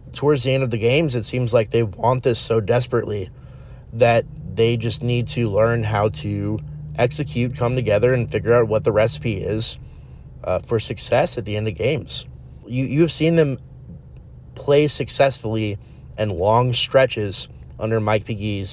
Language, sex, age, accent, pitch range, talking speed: English, male, 30-49, American, 110-130 Hz, 165 wpm